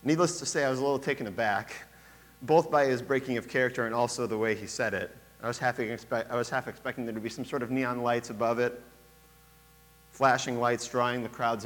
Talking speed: 215 wpm